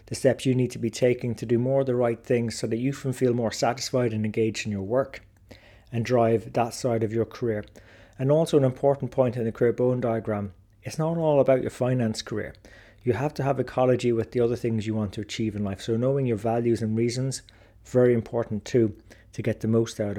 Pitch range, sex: 110-125 Hz, male